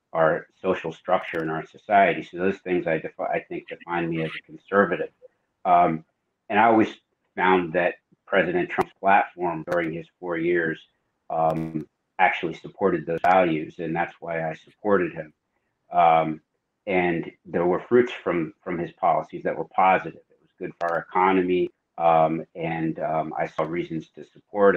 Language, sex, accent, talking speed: English, male, American, 160 wpm